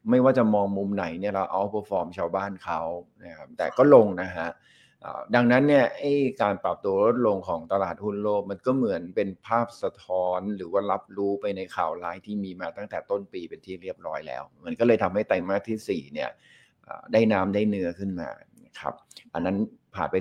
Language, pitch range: Thai, 95-115 Hz